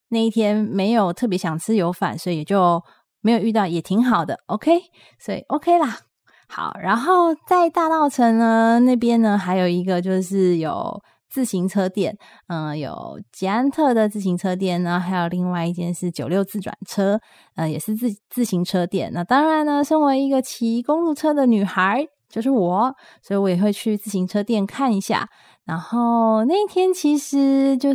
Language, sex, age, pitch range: Chinese, female, 20-39, 185-265 Hz